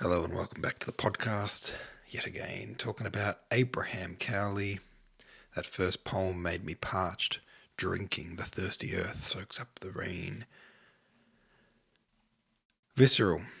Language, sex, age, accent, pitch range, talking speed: English, male, 40-59, Australian, 95-125 Hz, 125 wpm